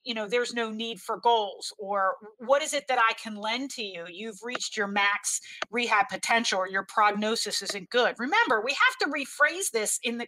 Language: English